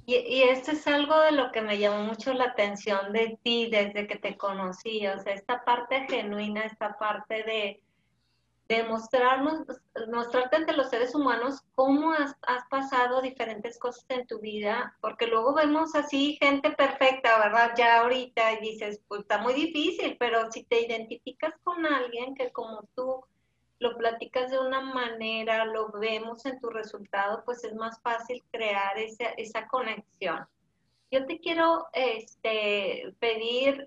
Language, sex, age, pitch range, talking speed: Spanish, female, 30-49, 220-260 Hz, 155 wpm